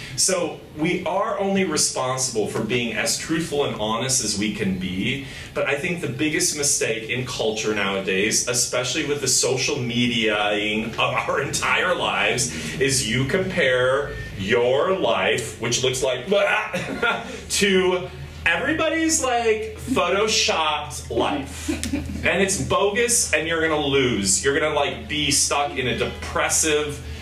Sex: male